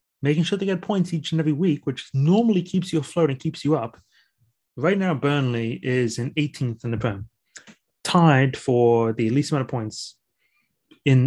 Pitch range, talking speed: 120-150 Hz, 185 wpm